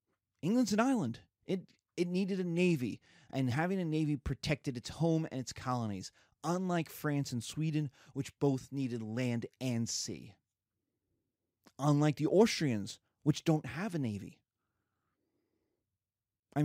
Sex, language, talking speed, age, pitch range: male, English, 135 wpm, 30-49, 115-155 Hz